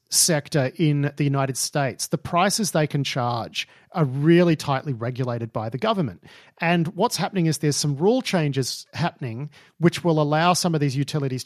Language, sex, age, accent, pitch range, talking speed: English, male, 40-59, Australian, 135-170 Hz, 175 wpm